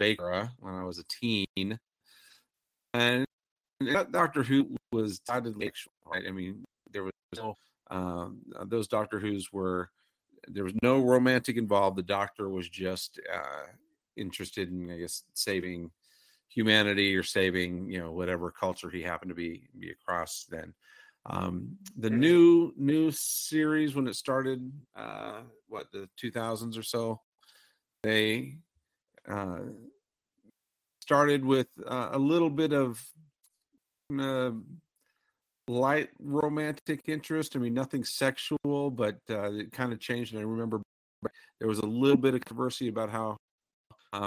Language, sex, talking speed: English, male, 140 wpm